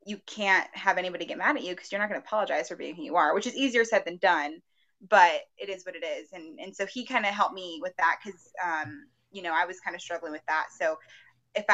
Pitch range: 170-205 Hz